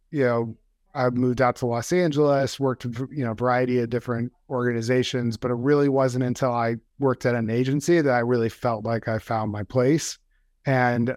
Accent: American